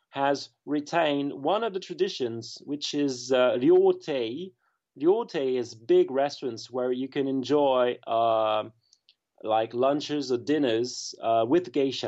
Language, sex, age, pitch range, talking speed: English, male, 30-49, 115-155 Hz, 130 wpm